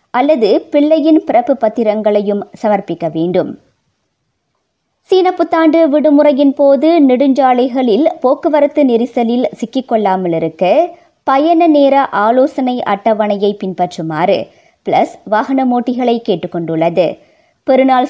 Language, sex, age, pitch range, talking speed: Tamil, male, 20-39, 205-280 Hz, 85 wpm